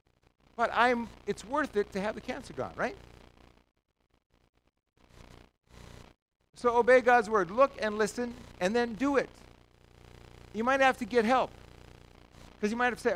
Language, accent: English, American